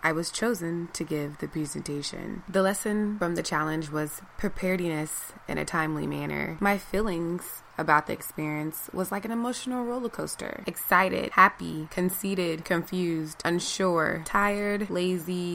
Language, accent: English, American